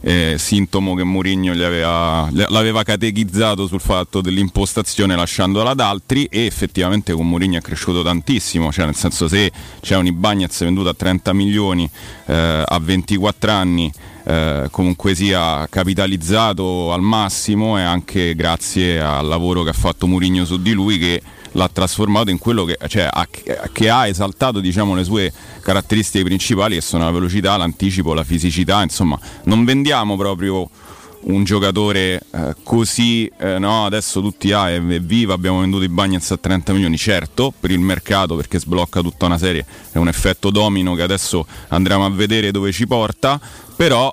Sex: male